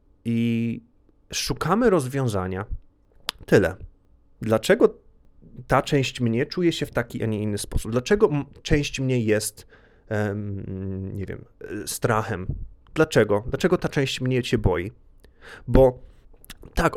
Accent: native